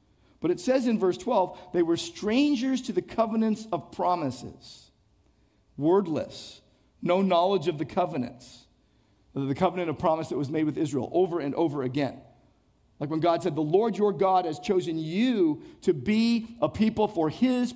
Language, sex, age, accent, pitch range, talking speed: English, male, 50-69, American, 135-210 Hz, 170 wpm